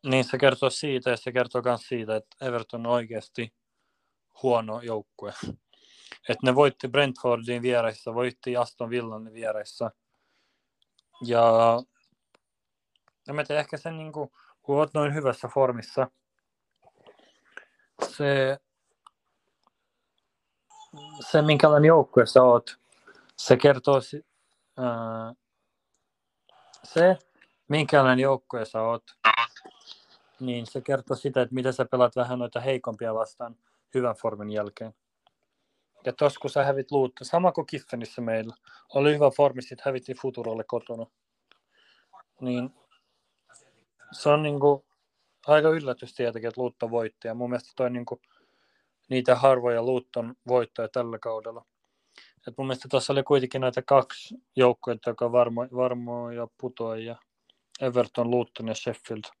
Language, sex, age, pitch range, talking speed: Finnish, male, 30-49, 120-135 Hz, 120 wpm